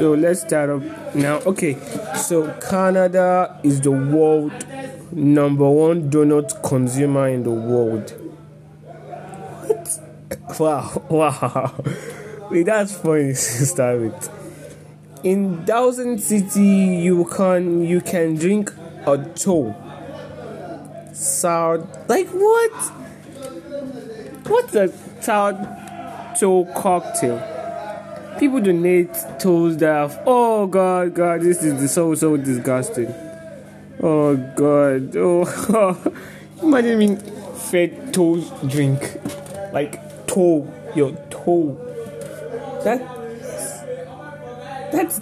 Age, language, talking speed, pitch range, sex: 20-39, English, 95 wpm, 150-195 Hz, male